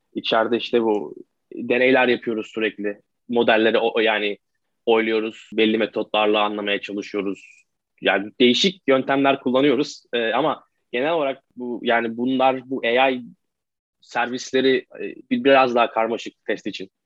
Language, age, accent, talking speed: Turkish, 20-39, native, 115 wpm